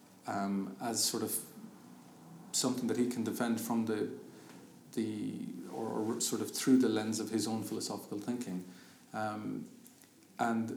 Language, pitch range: English, 110-130 Hz